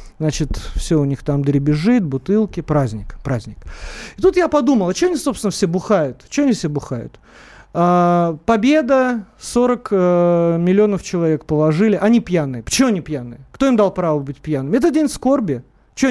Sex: male